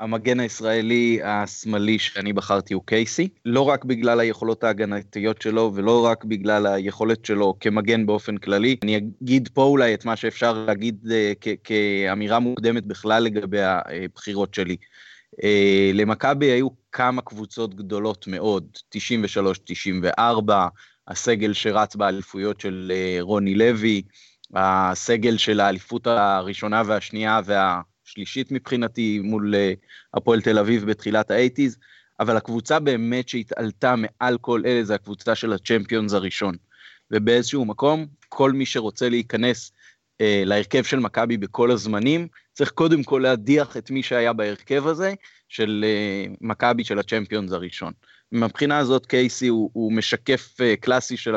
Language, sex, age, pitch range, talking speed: Hebrew, male, 20-39, 105-120 Hz, 130 wpm